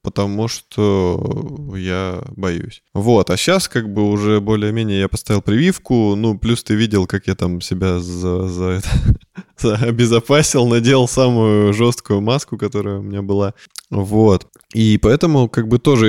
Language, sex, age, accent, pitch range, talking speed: Russian, male, 20-39, native, 100-125 Hz, 140 wpm